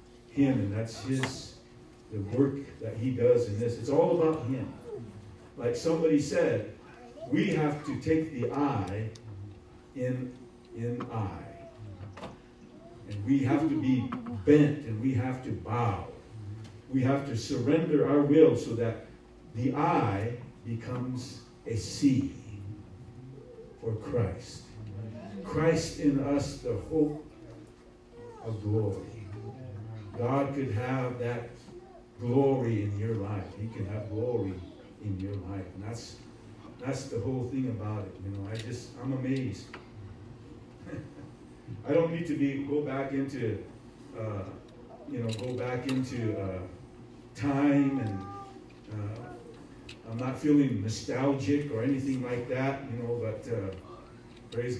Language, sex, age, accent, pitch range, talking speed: English, male, 50-69, American, 110-135 Hz, 130 wpm